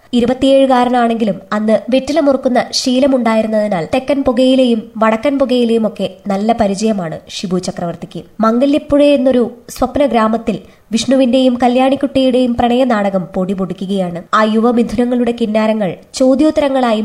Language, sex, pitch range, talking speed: Malayalam, male, 200-260 Hz, 90 wpm